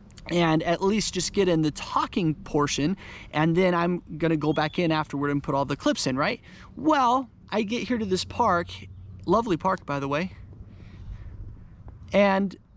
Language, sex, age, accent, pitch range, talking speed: English, male, 30-49, American, 140-215 Hz, 175 wpm